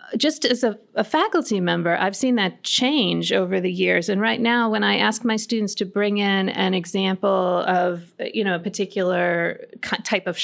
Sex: female